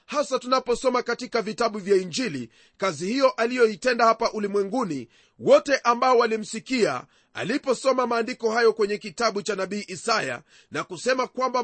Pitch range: 205-255 Hz